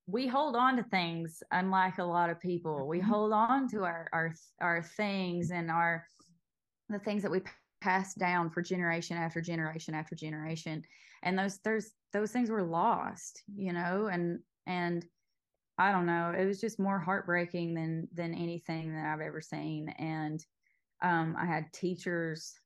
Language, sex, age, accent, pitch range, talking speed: English, female, 20-39, American, 165-190 Hz, 165 wpm